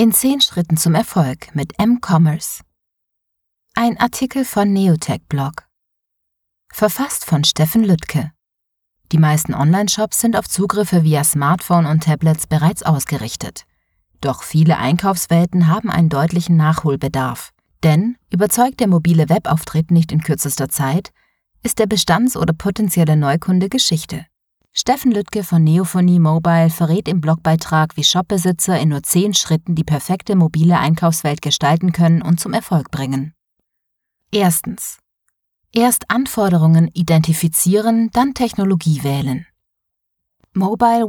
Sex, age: female, 30-49